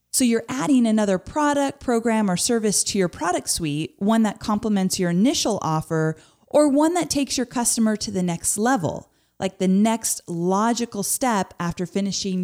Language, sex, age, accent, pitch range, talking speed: English, female, 30-49, American, 175-225 Hz, 170 wpm